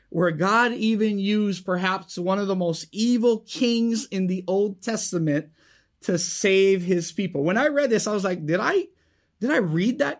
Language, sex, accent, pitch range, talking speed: English, male, American, 170-220 Hz, 190 wpm